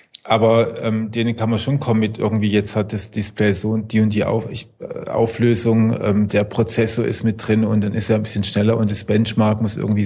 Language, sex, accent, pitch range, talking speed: German, male, German, 105-125 Hz, 235 wpm